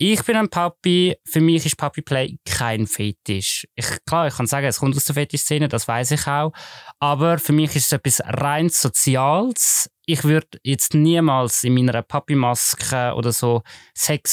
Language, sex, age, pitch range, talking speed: German, male, 20-39, 130-160 Hz, 180 wpm